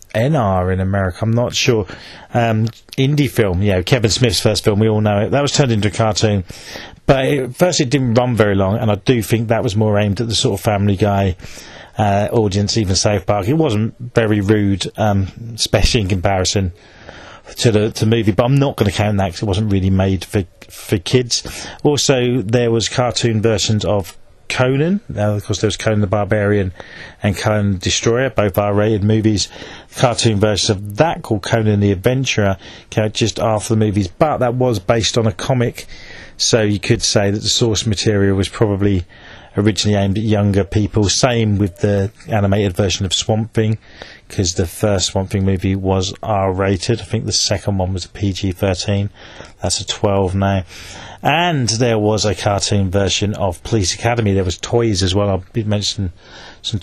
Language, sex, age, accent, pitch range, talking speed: English, male, 30-49, British, 100-115 Hz, 190 wpm